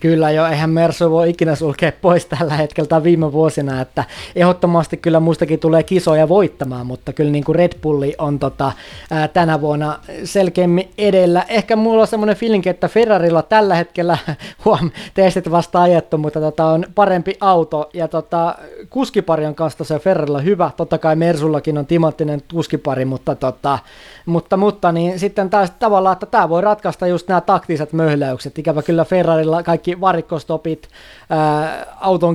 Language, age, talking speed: Finnish, 20-39, 165 wpm